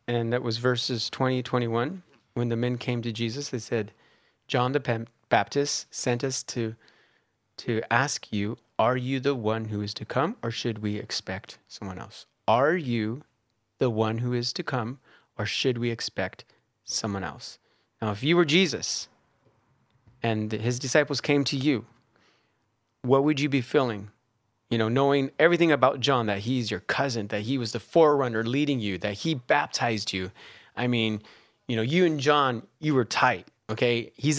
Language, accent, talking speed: English, American, 175 wpm